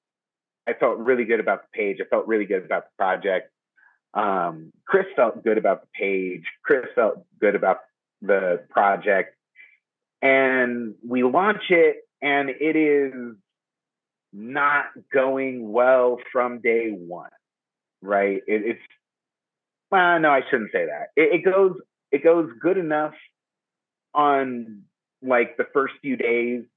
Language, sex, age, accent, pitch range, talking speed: English, male, 30-49, American, 110-150 Hz, 140 wpm